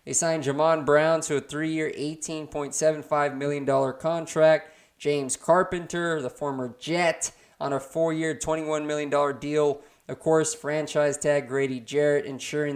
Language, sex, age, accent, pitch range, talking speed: English, male, 20-39, American, 145-165 Hz, 130 wpm